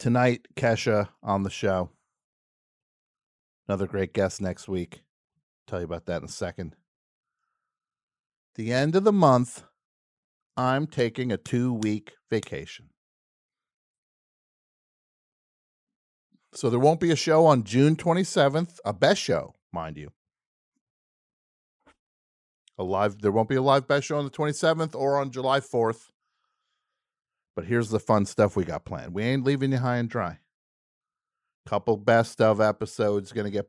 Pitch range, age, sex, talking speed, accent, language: 100-135 Hz, 50-69, male, 150 wpm, American, English